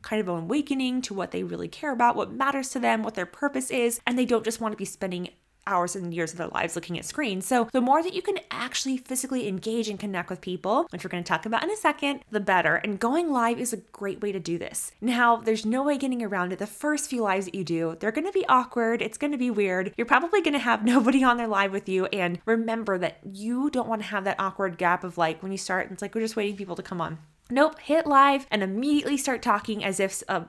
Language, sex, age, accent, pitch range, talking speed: English, female, 20-39, American, 195-265 Hz, 280 wpm